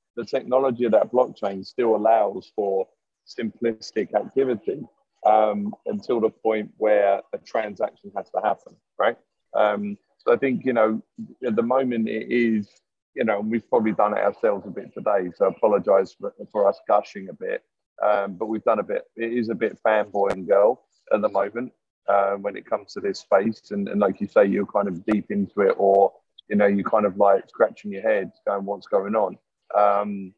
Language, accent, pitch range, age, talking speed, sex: English, British, 100-120 Hz, 30-49, 200 wpm, male